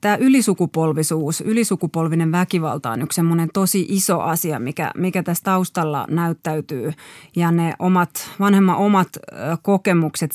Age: 30-49